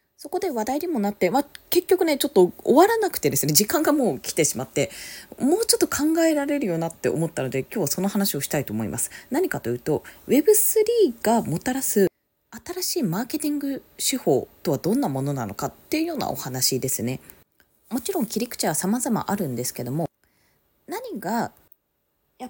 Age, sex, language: 20-39, female, Japanese